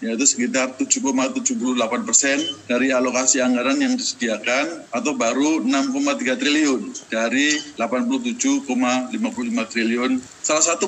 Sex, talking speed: male, 100 wpm